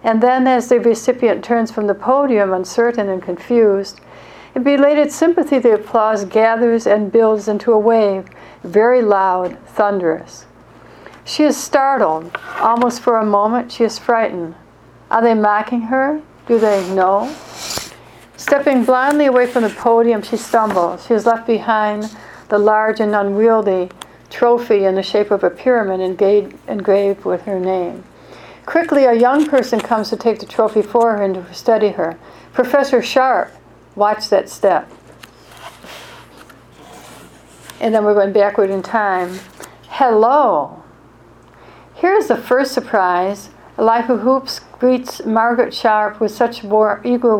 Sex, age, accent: female, 60-79, American